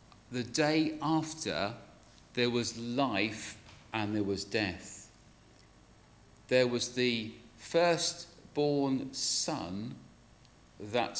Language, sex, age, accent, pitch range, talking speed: English, male, 40-59, British, 100-130 Hz, 85 wpm